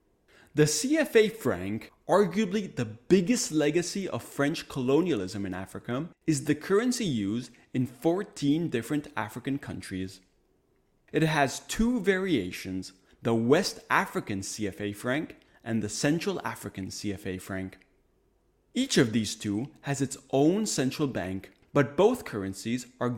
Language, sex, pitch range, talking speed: English, male, 105-160 Hz, 125 wpm